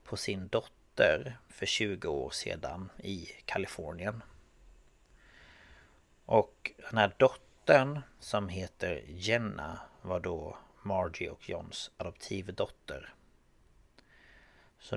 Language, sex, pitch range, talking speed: Swedish, male, 90-120 Hz, 90 wpm